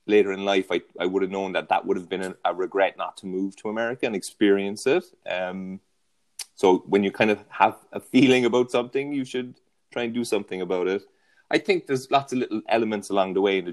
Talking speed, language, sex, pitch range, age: 235 wpm, English, male, 90-120 Hz, 30-49